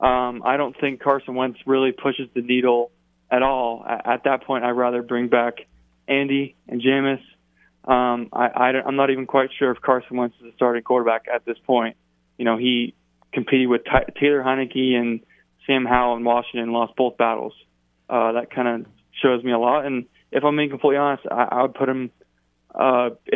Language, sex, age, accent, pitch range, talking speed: English, male, 20-39, American, 120-135 Hz, 200 wpm